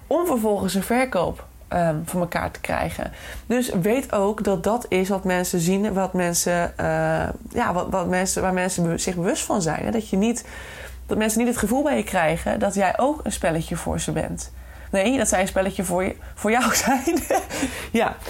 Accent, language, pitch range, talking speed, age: Dutch, Dutch, 170-225 Hz, 205 wpm, 20-39